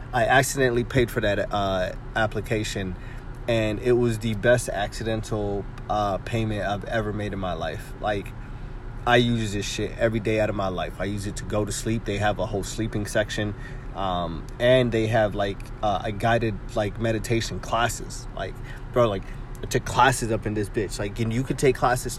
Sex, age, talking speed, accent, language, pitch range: male, 20-39, 195 wpm, American, English, 105-125 Hz